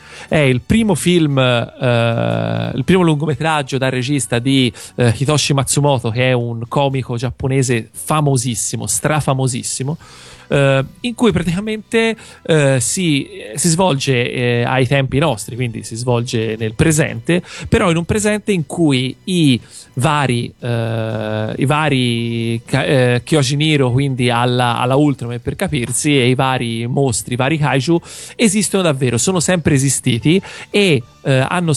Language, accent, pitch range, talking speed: Italian, native, 125-160 Hz, 135 wpm